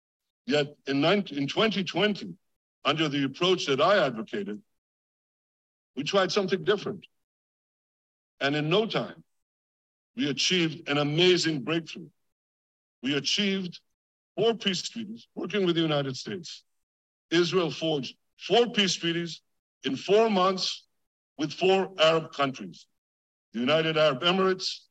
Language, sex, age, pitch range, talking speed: English, male, 60-79, 135-185 Hz, 120 wpm